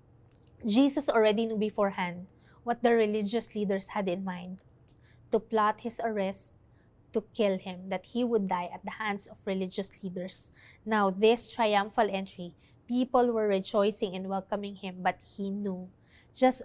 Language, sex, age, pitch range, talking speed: English, female, 20-39, 190-225 Hz, 150 wpm